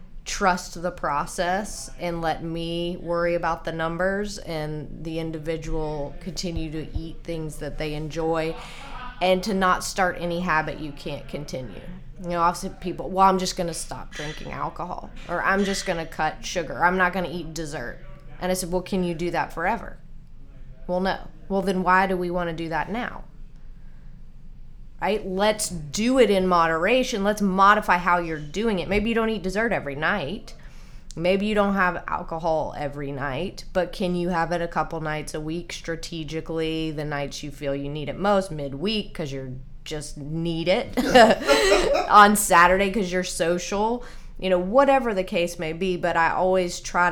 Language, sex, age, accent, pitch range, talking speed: English, female, 20-39, American, 160-185 Hz, 180 wpm